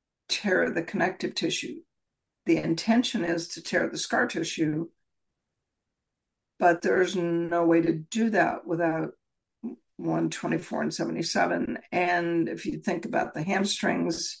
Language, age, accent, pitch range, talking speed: English, 60-79, American, 170-205 Hz, 125 wpm